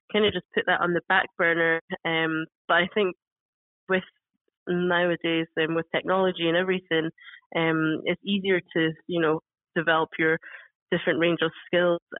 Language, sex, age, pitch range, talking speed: English, female, 20-39, 160-180 Hz, 160 wpm